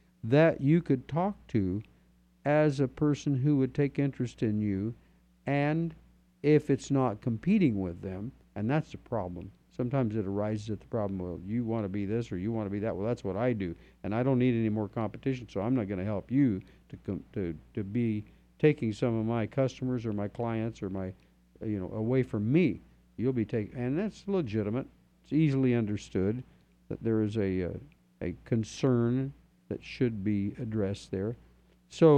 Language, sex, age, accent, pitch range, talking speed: English, male, 60-79, American, 100-135 Hz, 195 wpm